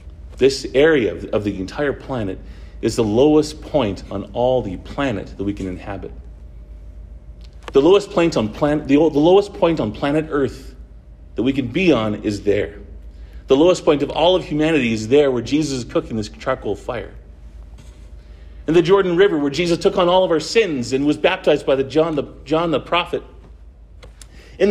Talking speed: 180 wpm